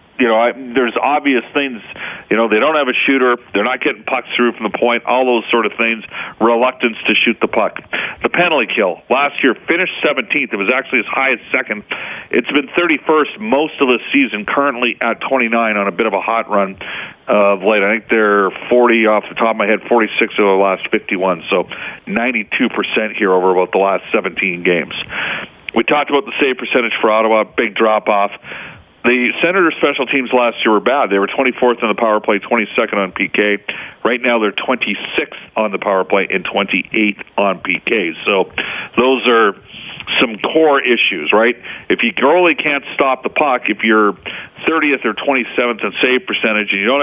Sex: male